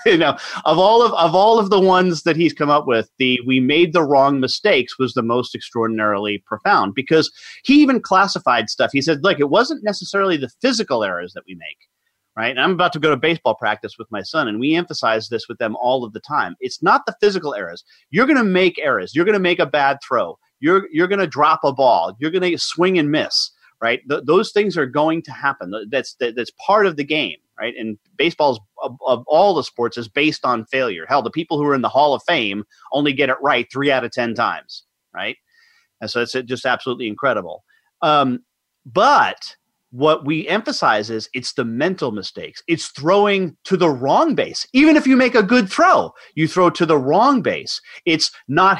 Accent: American